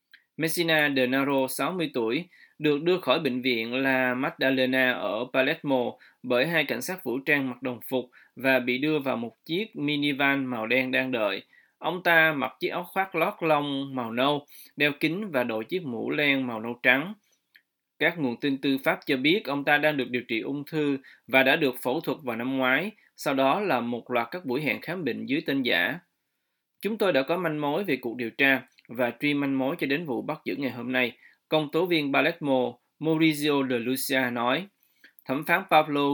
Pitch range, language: 125-150 Hz, Vietnamese